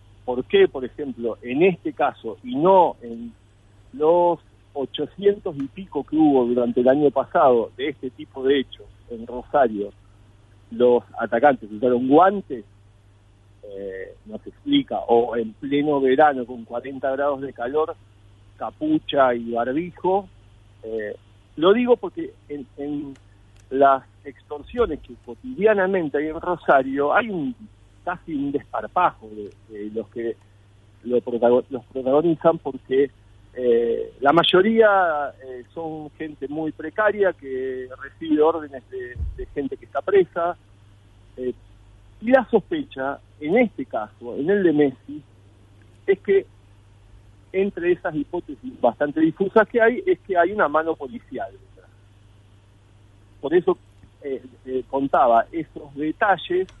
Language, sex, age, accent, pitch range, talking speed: Spanish, male, 50-69, Argentinian, 105-170 Hz, 130 wpm